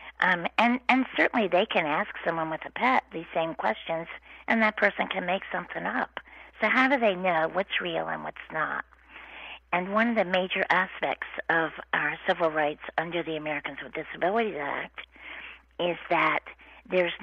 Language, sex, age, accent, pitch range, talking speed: English, female, 50-69, American, 150-185 Hz, 175 wpm